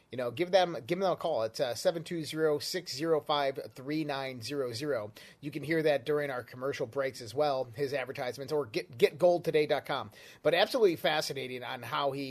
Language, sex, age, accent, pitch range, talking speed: English, male, 30-49, American, 130-160 Hz, 195 wpm